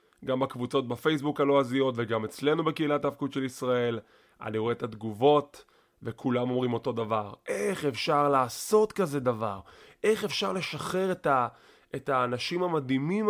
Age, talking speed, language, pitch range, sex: 20-39, 140 wpm, English, 115-155 Hz, male